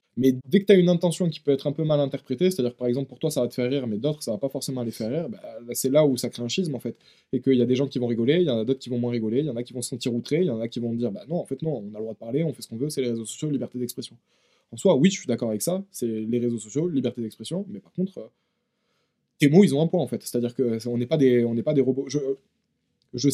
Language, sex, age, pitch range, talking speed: French, male, 20-39, 120-155 Hz, 355 wpm